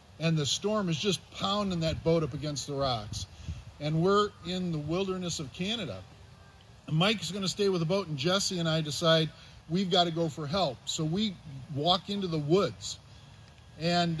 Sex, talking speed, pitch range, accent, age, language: male, 180 wpm, 140-185 Hz, American, 50-69, English